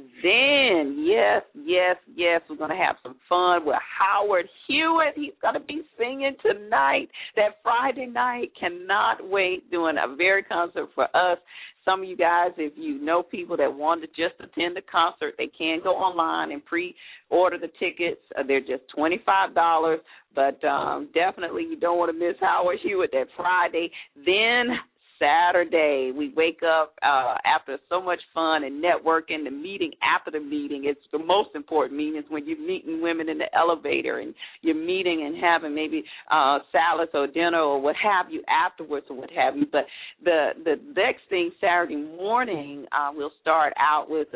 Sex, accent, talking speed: female, American, 175 wpm